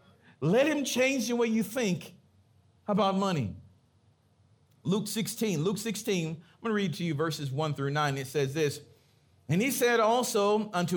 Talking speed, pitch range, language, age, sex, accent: 170 wpm, 145-215 Hz, English, 40-59, male, American